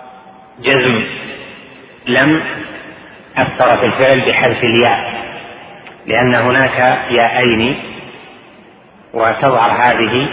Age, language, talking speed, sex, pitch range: 30-49, Arabic, 70 wpm, male, 120-135 Hz